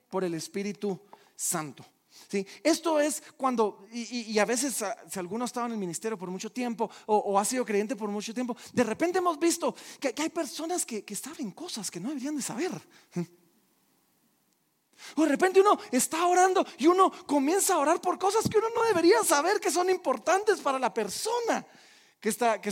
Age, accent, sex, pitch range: 40-59, Mexican, male, 205-300 Hz